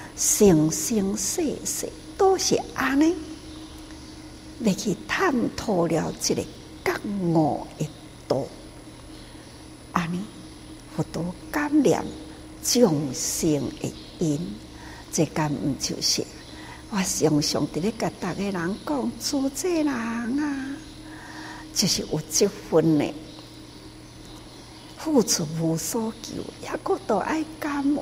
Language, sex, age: Chinese, female, 60-79